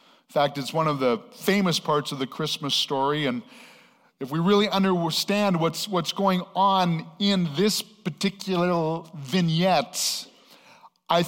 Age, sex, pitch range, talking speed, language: 50-69, male, 160-210 Hz, 140 wpm, English